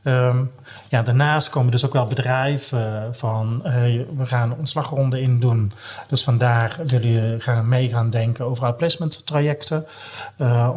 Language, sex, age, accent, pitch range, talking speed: Dutch, male, 30-49, Dutch, 115-130 Hz, 140 wpm